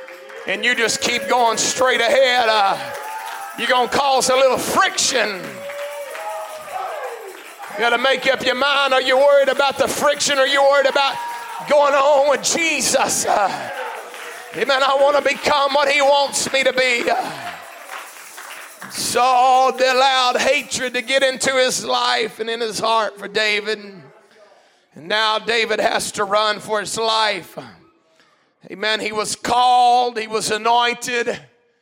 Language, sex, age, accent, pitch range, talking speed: English, male, 40-59, American, 230-275 Hz, 155 wpm